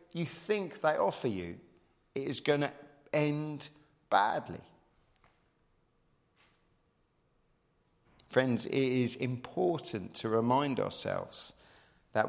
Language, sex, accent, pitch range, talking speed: English, male, British, 125-155 Hz, 95 wpm